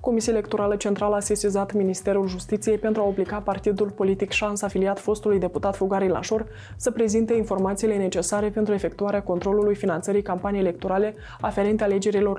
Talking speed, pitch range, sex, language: 145 wpm, 185-205 Hz, female, Romanian